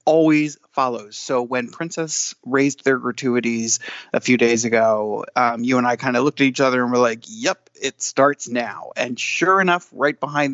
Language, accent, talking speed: English, American, 195 wpm